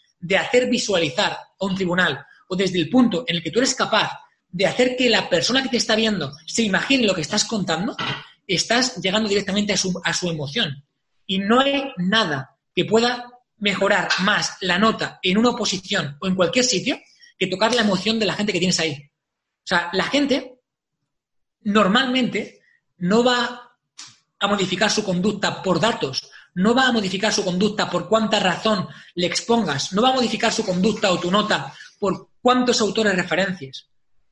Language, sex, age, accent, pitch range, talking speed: Spanish, male, 20-39, Spanish, 180-235 Hz, 180 wpm